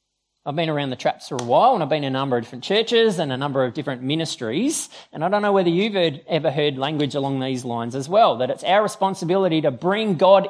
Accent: Australian